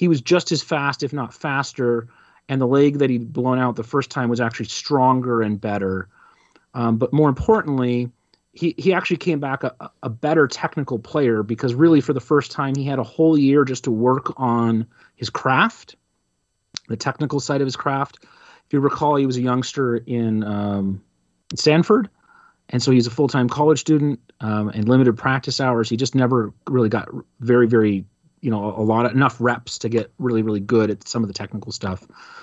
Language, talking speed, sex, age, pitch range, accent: English, 200 wpm, male, 30-49, 115-140 Hz, American